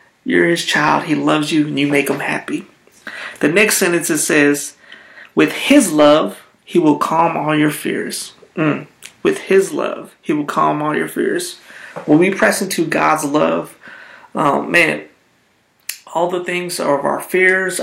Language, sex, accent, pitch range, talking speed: English, male, American, 145-185 Hz, 170 wpm